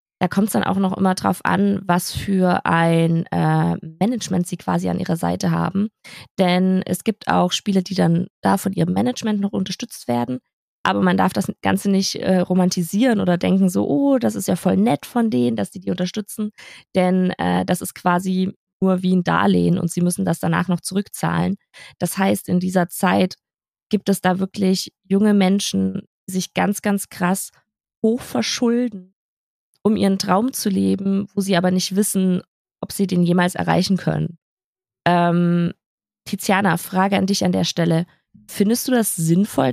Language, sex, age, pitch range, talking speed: German, female, 20-39, 180-205 Hz, 180 wpm